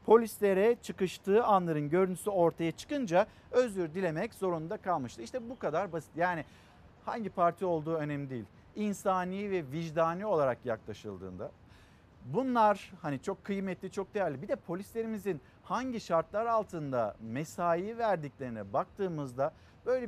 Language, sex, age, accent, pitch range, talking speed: Turkish, male, 50-69, native, 150-210 Hz, 125 wpm